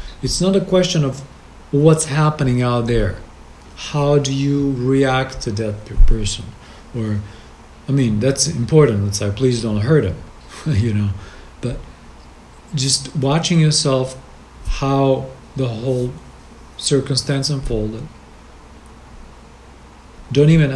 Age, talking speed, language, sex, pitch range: 40-59, 115 wpm, English, male, 100-150 Hz